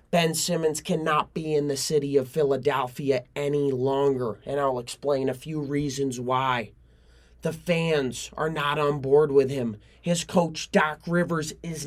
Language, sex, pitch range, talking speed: English, male, 140-170 Hz, 155 wpm